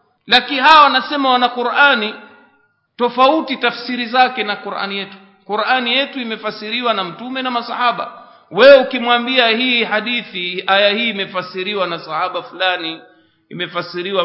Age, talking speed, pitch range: 50-69, 120 wpm, 160-245 Hz